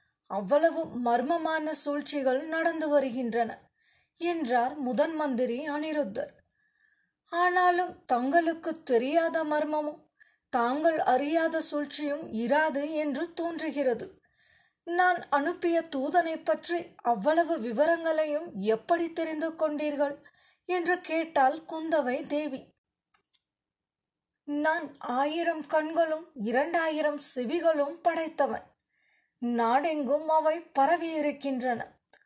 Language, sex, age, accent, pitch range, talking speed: Tamil, female, 20-39, native, 280-330 Hz, 75 wpm